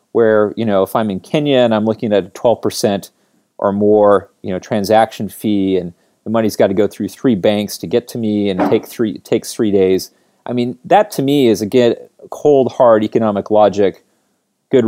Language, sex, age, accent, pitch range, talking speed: English, male, 30-49, American, 100-125 Hz, 205 wpm